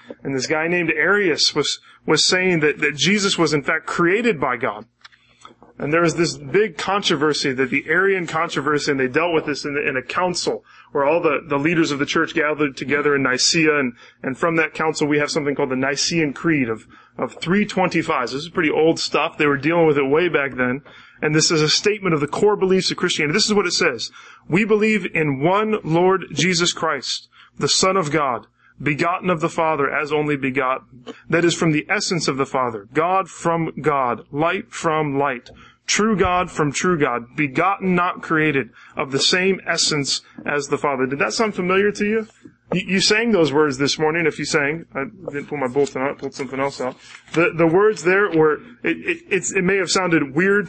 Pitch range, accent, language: 145-185 Hz, American, English